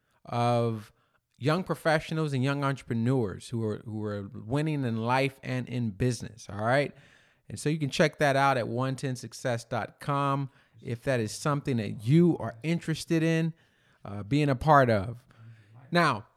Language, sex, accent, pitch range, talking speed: English, male, American, 115-155 Hz, 155 wpm